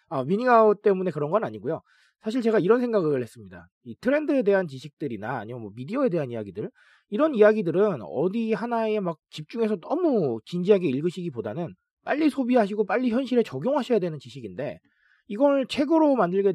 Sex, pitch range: male, 150-230 Hz